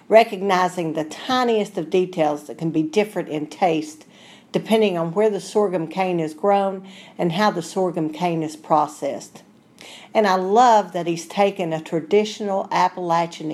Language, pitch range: English, 165-205 Hz